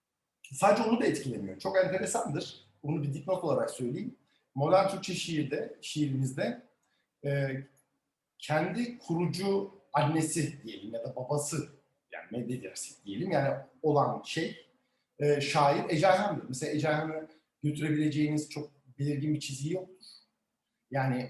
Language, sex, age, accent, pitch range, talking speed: Turkish, male, 60-79, native, 140-170 Hz, 115 wpm